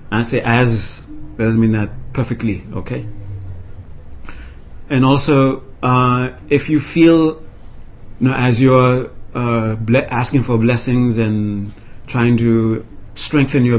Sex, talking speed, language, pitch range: male, 125 wpm, English, 105-125 Hz